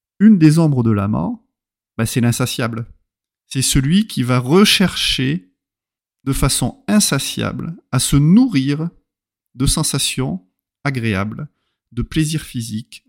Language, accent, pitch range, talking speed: French, French, 110-155 Hz, 120 wpm